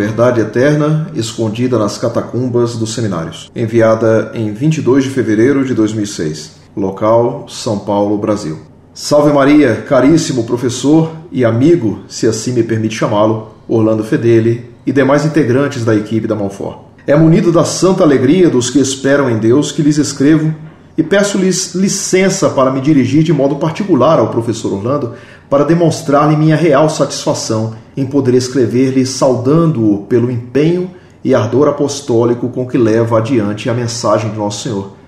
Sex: male